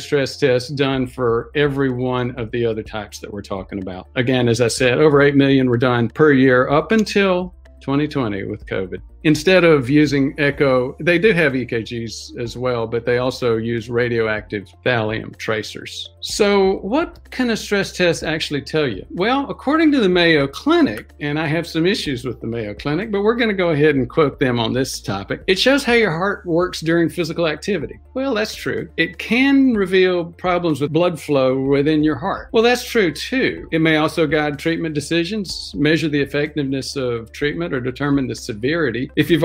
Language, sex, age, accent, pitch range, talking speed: English, male, 50-69, American, 125-165 Hz, 190 wpm